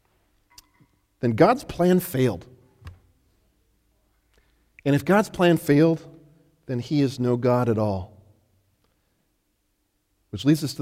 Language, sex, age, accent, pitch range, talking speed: English, male, 40-59, American, 100-130 Hz, 110 wpm